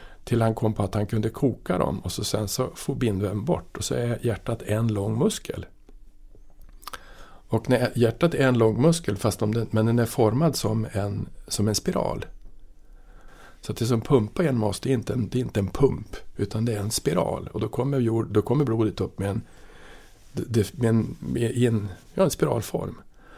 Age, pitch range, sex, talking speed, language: 50-69, 105-120 Hz, male, 205 wpm, Swedish